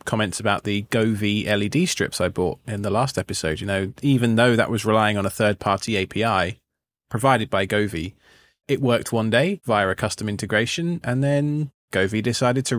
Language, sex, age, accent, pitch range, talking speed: English, male, 20-39, British, 105-125 Hz, 190 wpm